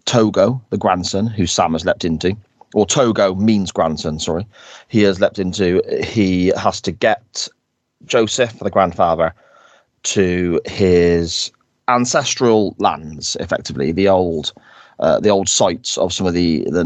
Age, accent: 30-49, British